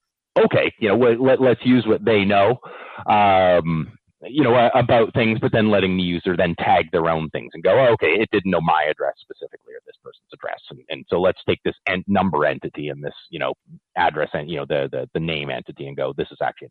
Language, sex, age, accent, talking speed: English, male, 30-49, American, 230 wpm